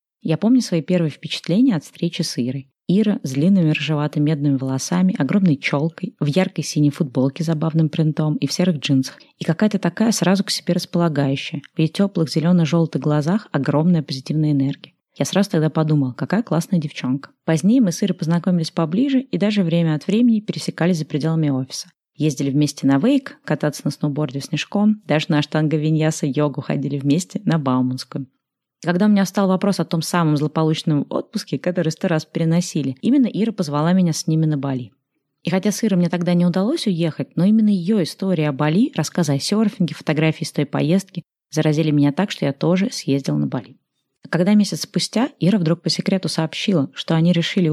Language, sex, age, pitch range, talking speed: Russian, female, 20-39, 150-185 Hz, 185 wpm